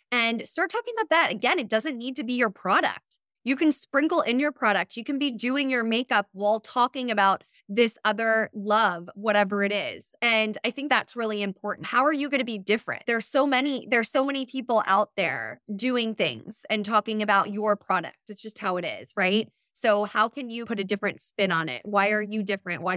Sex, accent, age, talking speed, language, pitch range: female, American, 20-39, 220 wpm, English, 195-245 Hz